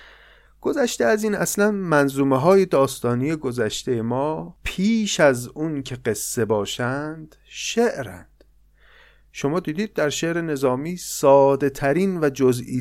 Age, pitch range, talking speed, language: 30-49, 115-155 Hz, 115 wpm, Persian